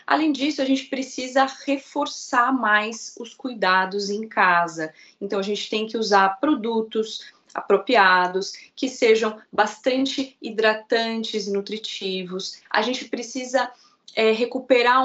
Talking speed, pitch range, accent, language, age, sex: 115 wpm, 200-235 Hz, Brazilian, Portuguese, 20-39, female